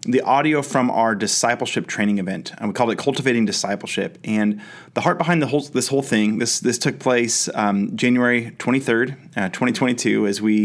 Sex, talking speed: male, 175 wpm